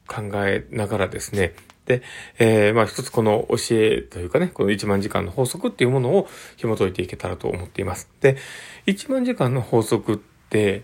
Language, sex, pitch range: Japanese, male, 105-180 Hz